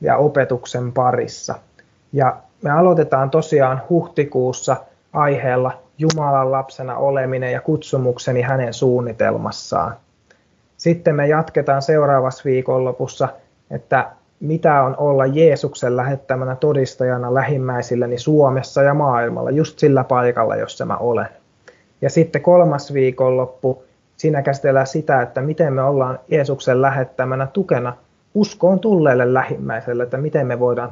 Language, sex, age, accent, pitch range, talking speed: Finnish, male, 20-39, native, 125-150 Hz, 115 wpm